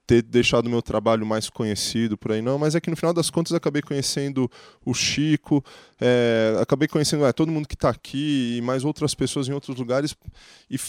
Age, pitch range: 20-39, 115-145 Hz